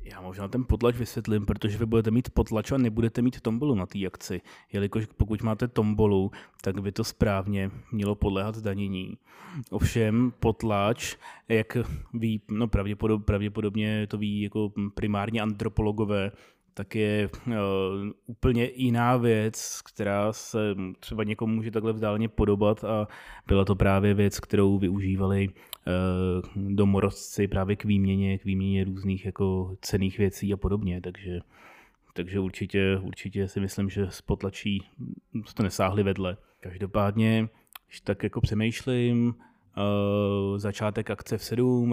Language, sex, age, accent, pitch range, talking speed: Czech, male, 20-39, native, 95-110 Hz, 135 wpm